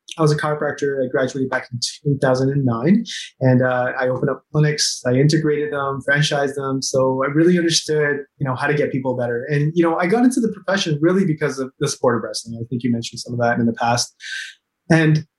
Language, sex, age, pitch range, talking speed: English, male, 20-39, 125-155 Hz, 220 wpm